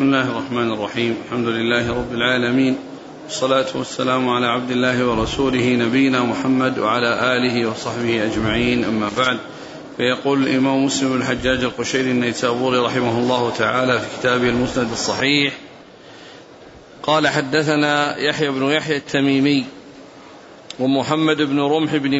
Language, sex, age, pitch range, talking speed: Arabic, male, 40-59, 130-150 Hz, 120 wpm